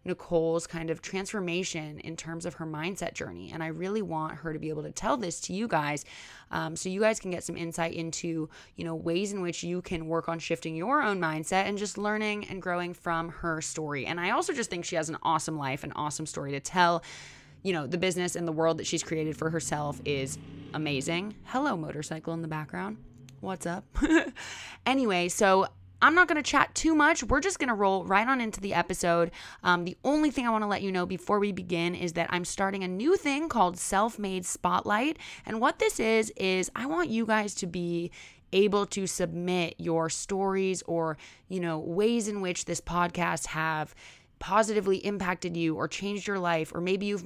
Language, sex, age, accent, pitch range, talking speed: English, female, 20-39, American, 165-200 Hz, 210 wpm